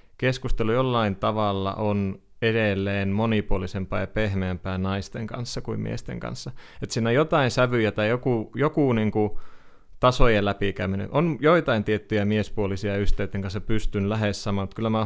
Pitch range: 100-110 Hz